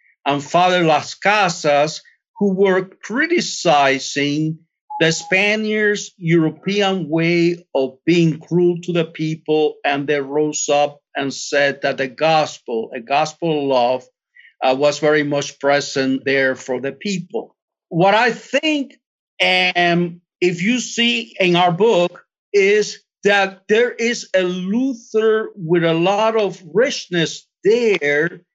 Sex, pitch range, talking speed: male, 155-200 Hz, 130 wpm